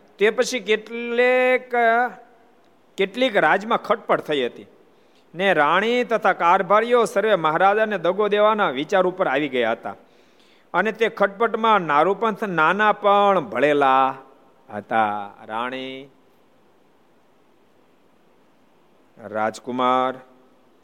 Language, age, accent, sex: Gujarati, 50-69, native, male